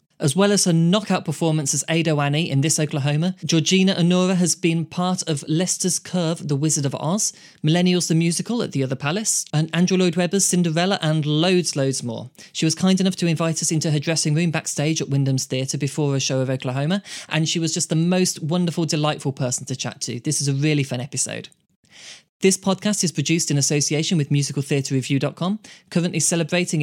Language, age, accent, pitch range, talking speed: English, 20-39, British, 145-180 Hz, 195 wpm